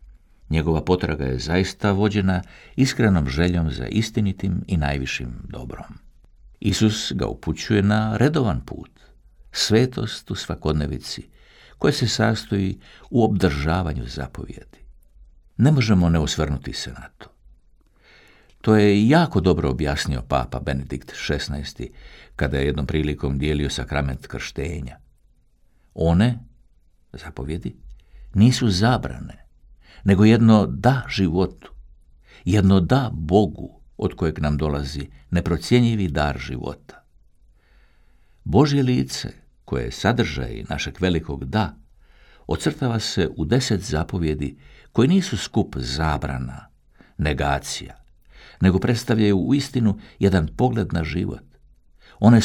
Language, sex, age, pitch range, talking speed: Croatian, male, 60-79, 70-105 Hz, 105 wpm